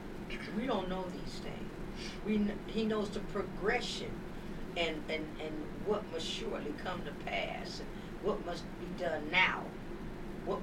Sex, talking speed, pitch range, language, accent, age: female, 135 wpm, 170-190 Hz, English, American, 50-69